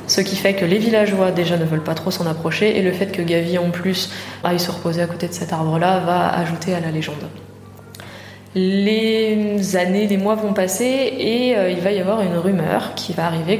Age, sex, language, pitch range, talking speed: 20-39, female, French, 170-210 Hz, 215 wpm